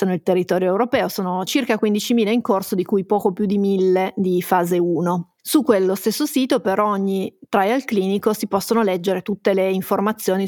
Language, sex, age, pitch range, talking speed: Italian, female, 30-49, 185-210 Hz, 180 wpm